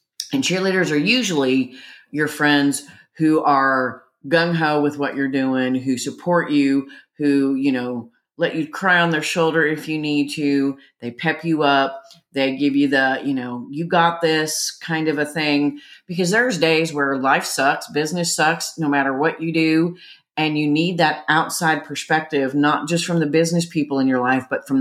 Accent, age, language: American, 40-59, English